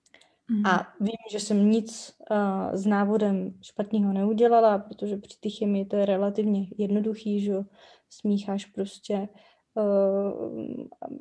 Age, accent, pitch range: 20-39, native, 205-240 Hz